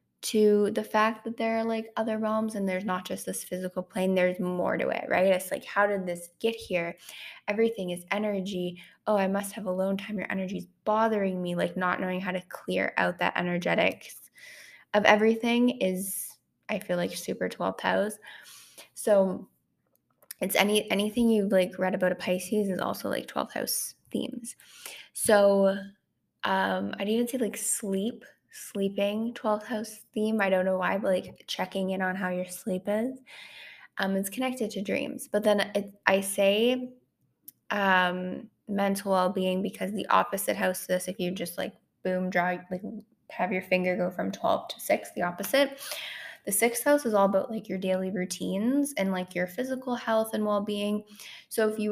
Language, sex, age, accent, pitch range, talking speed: English, female, 10-29, American, 185-220 Hz, 185 wpm